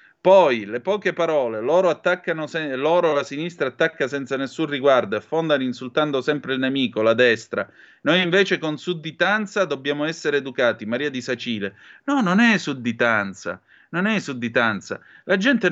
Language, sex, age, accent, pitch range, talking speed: Italian, male, 30-49, native, 130-180 Hz, 145 wpm